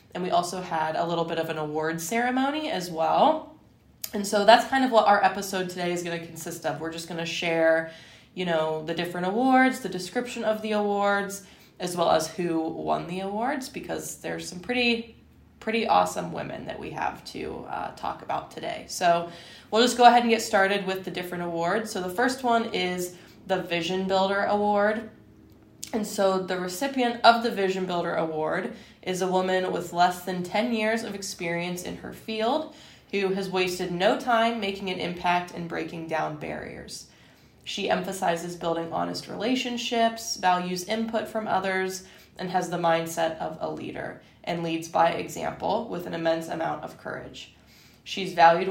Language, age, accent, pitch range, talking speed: English, 20-39, American, 170-215 Hz, 180 wpm